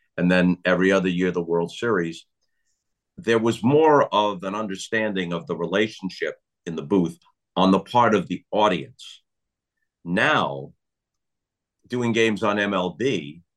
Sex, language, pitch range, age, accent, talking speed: male, English, 90-115 Hz, 50-69, American, 135 wpm